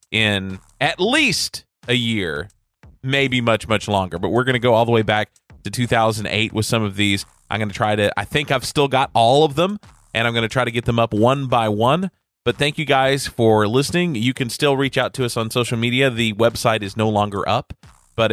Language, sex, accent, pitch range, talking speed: English, male, American, 105-125 Hz, 235 wpm